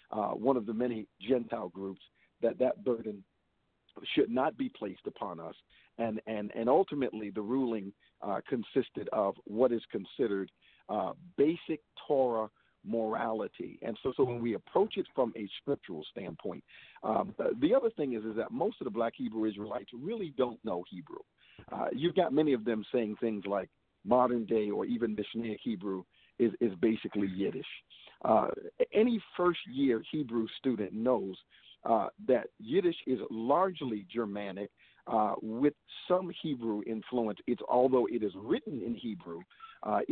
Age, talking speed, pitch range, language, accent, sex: 50-69, 160 wpm, 105-140 Hz, English, American, male